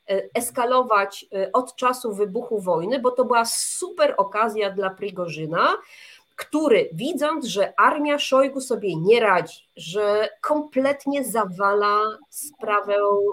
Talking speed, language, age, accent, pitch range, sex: 110 wpm, Polish, 30-49, native, 205-265 Hz, female